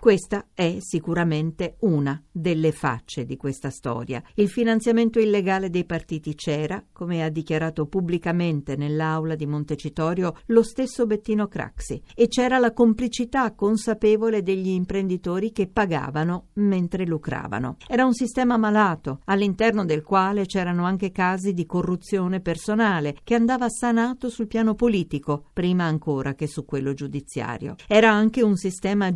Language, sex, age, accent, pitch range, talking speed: Italian, female, 50-69, native, 155-215 Hz, 135 wpm